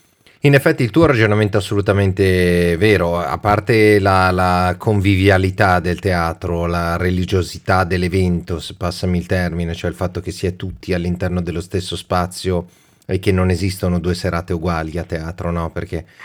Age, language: 30-49, Italian